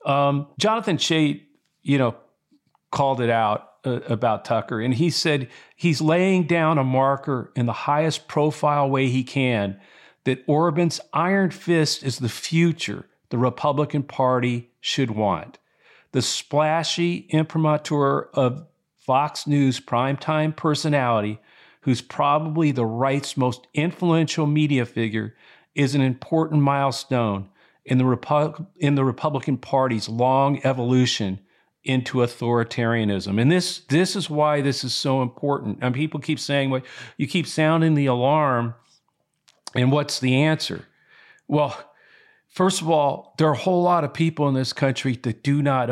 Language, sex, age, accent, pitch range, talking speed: English, male, 50-69, American, 125-155 Hz, 140 wpm